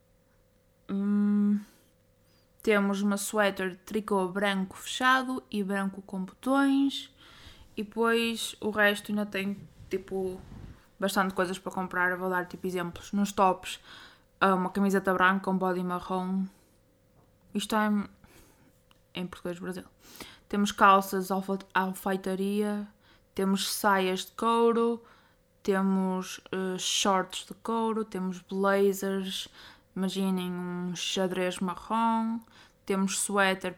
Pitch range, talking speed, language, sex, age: 185-210 Hz, 110 wpm, Portuguese, female, 20-39